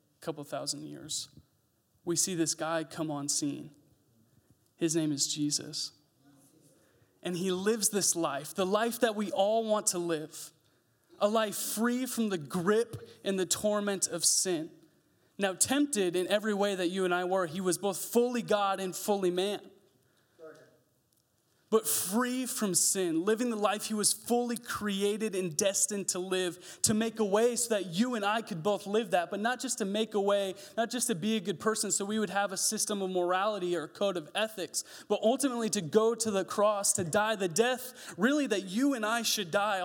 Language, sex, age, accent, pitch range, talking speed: English, male, 20-39, American, 170-220 Hz, 195 wpm